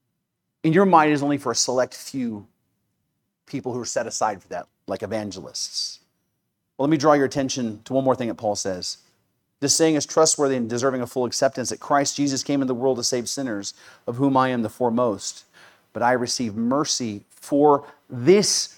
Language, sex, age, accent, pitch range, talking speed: English, male, 40-59, American, 115-140 Hz, 200 wpm